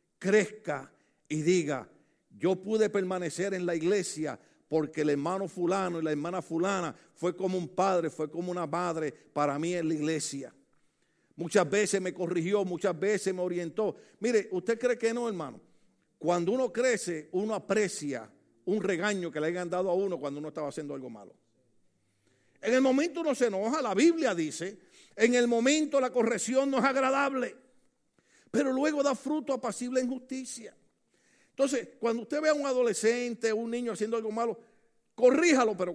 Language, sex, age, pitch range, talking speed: Spanish, male, 50-69, 170-245 Hz, 170 wpm